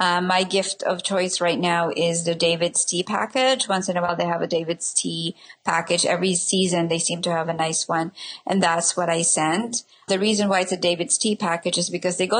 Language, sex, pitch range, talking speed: English, female, 165-190 Hz, 230 wpm